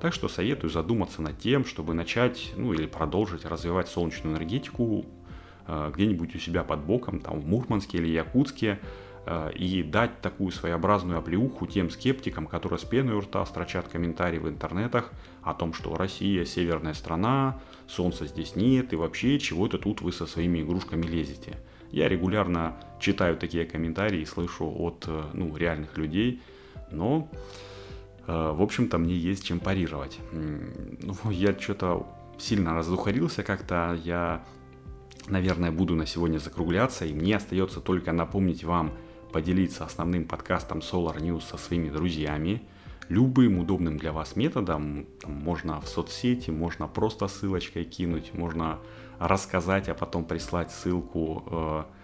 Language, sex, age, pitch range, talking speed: Russian, male, 30-49, 80-100 Hz, 140 wpm